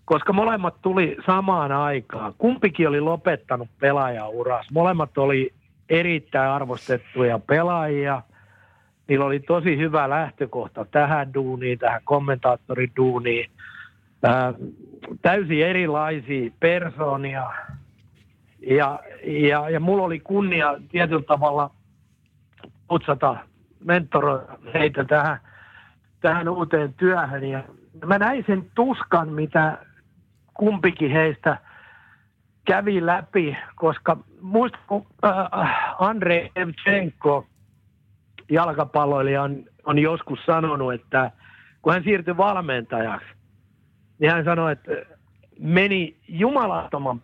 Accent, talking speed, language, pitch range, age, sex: native, 95 wpm, Finnish, 130-175 Hz, 60-79, male